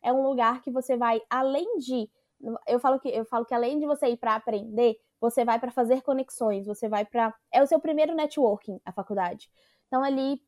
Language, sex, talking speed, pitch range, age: Portuguese, female, 210 wpm, 240-295 Hz, 10-29